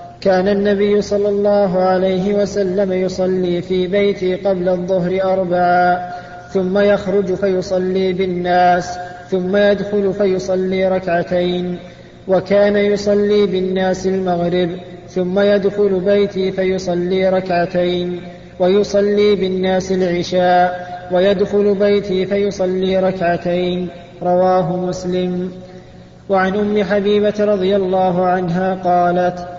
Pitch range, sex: 180-200 Hz, male